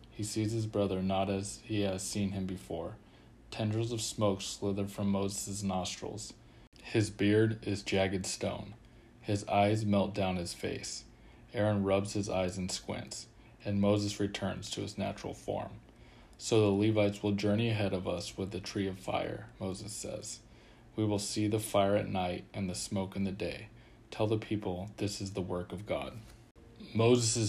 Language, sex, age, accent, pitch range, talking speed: English, male, 20-39, American, 95-110 Hz, 175 wpm